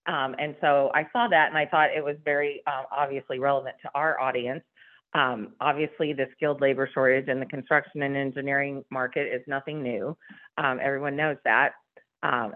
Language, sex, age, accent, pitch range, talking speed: English, female, 40-59, American, 130-150 Hz, 180 wpm